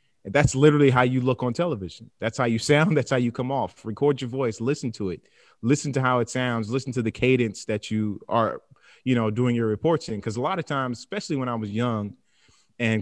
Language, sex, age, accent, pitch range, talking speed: English, male, 30-49, American, 110-135 Hz, 235 wpm